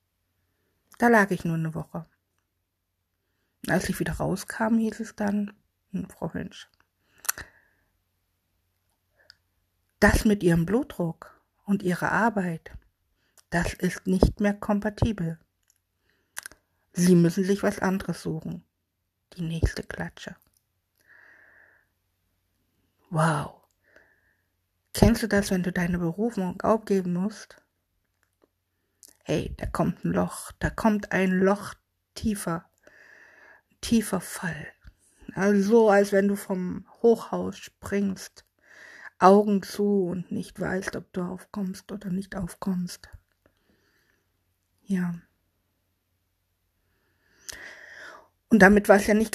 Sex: female